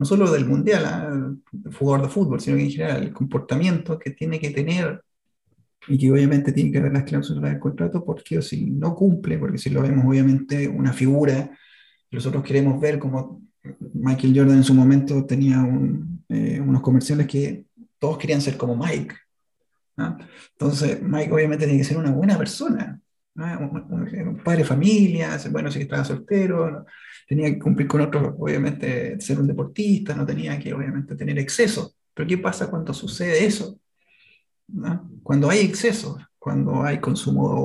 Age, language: 30-49, Spanish